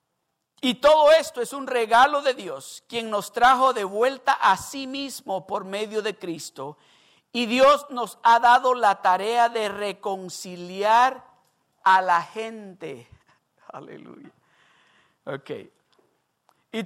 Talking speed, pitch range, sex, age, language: 125 wpm, 210-265 Hz, male, 50-69, Spanish